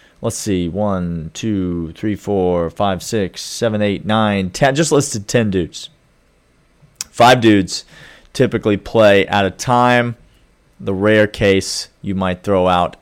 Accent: American